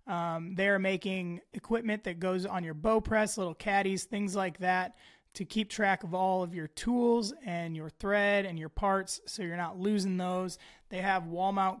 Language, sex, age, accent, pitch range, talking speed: English, male, 20-39, American, 175-205 Hz, 195 wpm